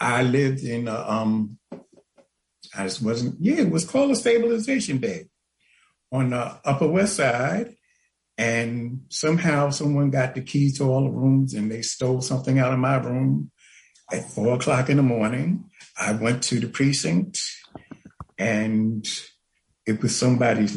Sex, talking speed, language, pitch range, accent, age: male, 155 wpm, English, 110-135 Hz, American, 60-79